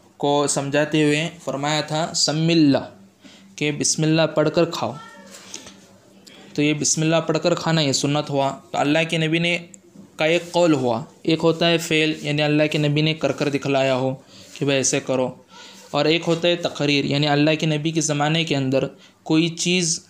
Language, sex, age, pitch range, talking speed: Urdu, male, 20-39, 145-165 Hz, 190 wpm